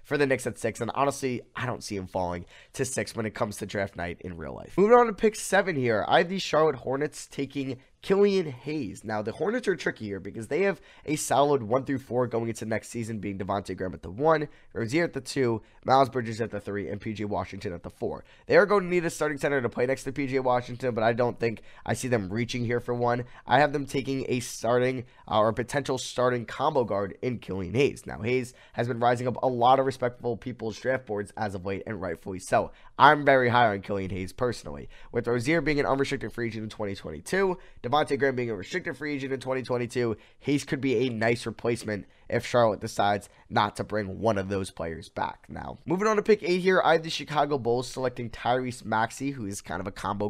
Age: 20-39